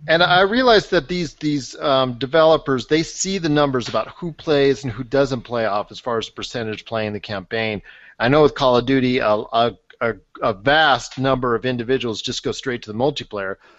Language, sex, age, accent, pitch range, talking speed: English, male, 40-59, American, 115-145 Hz, 200 wpm